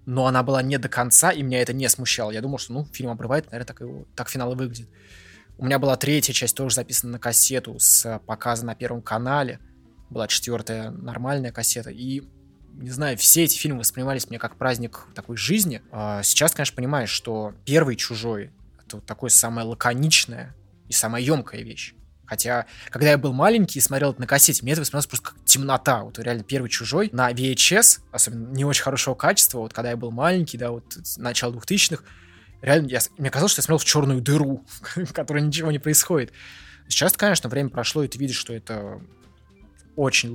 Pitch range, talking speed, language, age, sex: 115-140 Hz, 195 wpm, Russian, 20-39, male